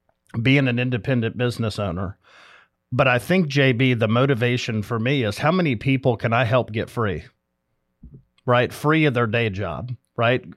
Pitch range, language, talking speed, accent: 115-135 Hz, English, 165 wpm, American